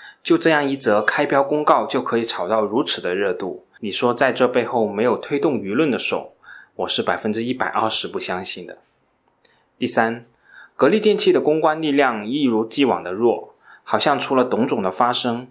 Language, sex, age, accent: Chinese, male, 20-39, native